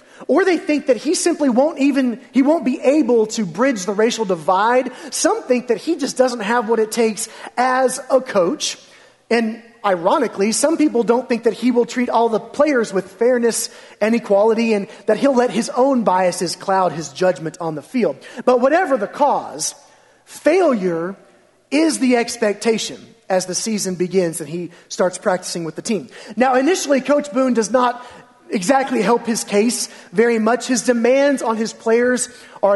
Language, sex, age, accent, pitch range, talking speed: English, male, 30-49, American, 210-260 Hz, 180 wpm